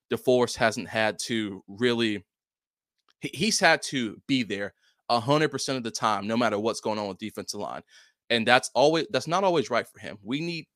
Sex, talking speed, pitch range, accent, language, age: male, 180 wpm, 105-135 Hz, American, English, 20-39